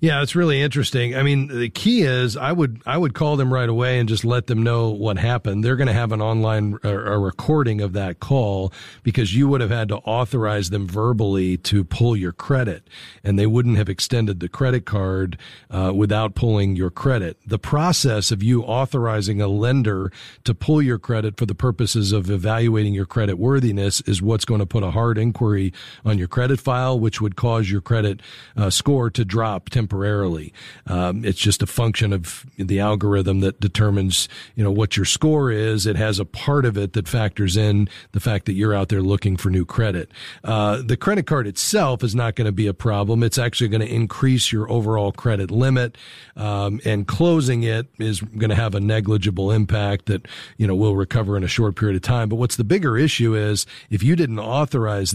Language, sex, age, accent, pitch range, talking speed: English, male, 40-59, American, 100-120 Hz, 210 wpm